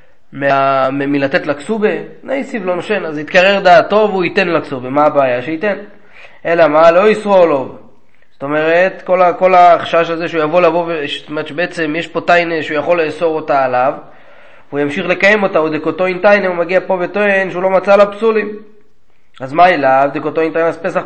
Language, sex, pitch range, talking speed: Hebrew, male, 155-200 Hz, 195 wpm